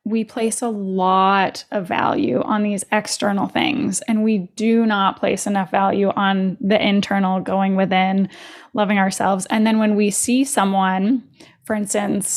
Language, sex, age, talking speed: English, female, 10-29, 155 wpm